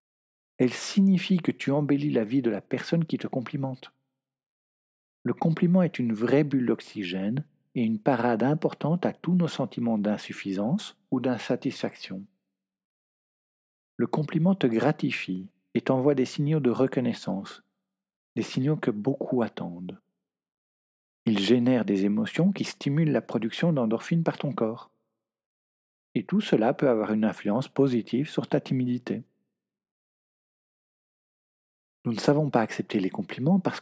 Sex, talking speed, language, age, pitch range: male, 135 wpm, French, 50-69, 105-150 Hz